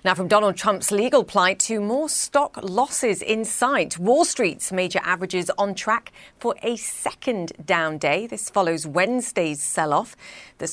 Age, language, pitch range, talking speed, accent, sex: 40-59, English, 165-215 Hz, 155 wpm, British, female